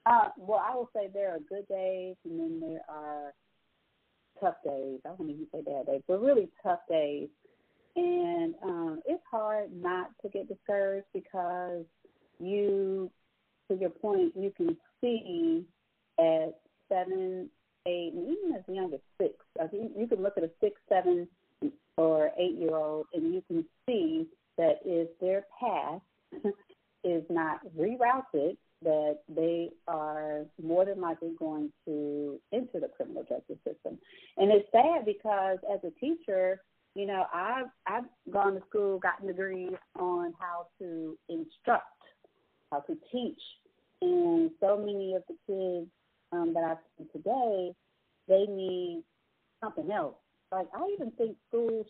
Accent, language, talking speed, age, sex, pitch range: American, English, 145 wpm, 40-59, female, 170-250 Hz